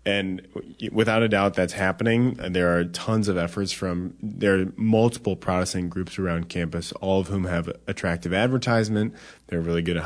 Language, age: English, 20-39